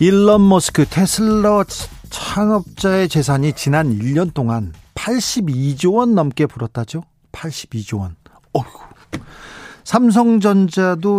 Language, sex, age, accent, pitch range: Korean, male, 40-59, native, 130-180 Hz